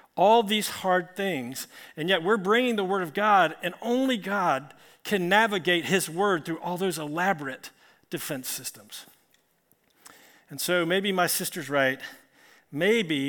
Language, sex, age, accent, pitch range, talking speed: English, male, 50-69, American, 155-200 Hz, 145 wpm